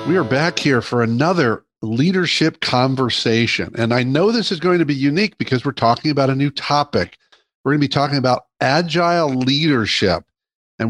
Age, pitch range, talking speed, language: 50-69, 130-160 Hz, 180 wpm, English